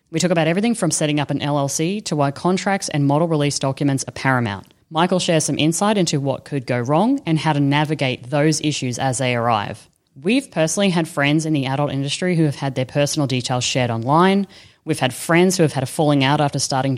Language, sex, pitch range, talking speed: English, female, 140-175 Hz, 225 wpm